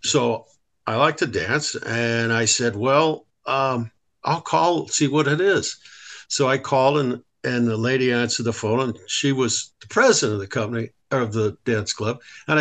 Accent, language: American, English